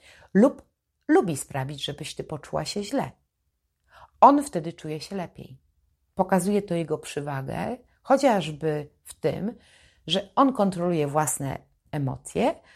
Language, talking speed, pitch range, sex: Polish, 120 wpm, 150-205 Hz, female